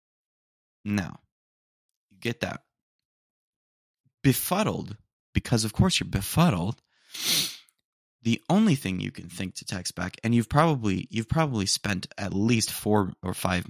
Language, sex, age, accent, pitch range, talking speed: English, male, 20-39, American, 90-120 Hz, 125 wpm